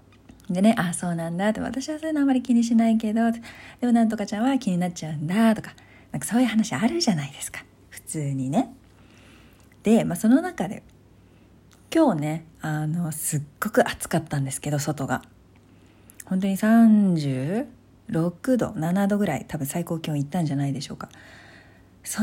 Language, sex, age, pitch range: Japanese, female, 40-59, 145-230 Hz